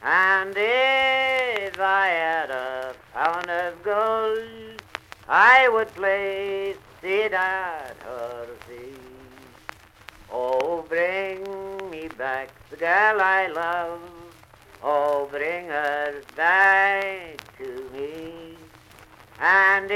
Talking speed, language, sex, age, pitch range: 90 wpm, English, male, 60-79, 145-195 Hz